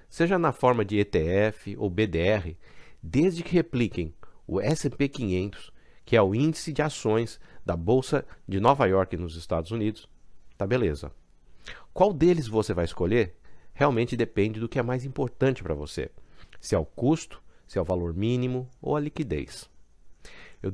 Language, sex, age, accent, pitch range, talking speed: Portuguese, male, 50-69, Brazilian, 100-140 Hz, 160 wpm